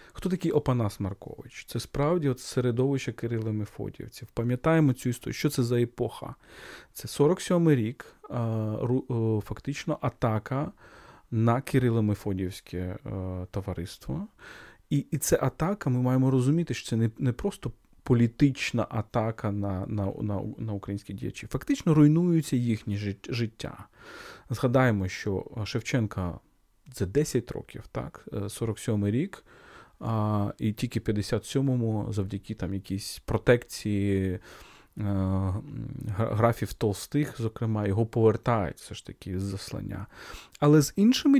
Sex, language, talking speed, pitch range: male, Ukrainian, 115 wpm, 110-145 Hz